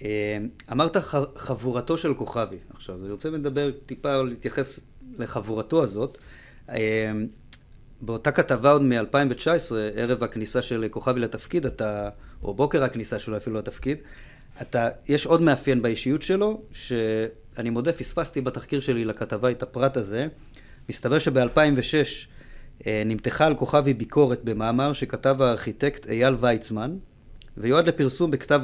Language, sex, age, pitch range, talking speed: Hebrew, male, 30-49, 115-145 Hz, 120 wpm